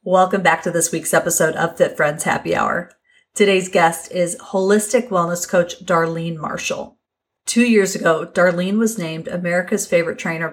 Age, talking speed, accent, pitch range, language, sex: 30-49, 160 wpm, American, 170-215 Hz, English, female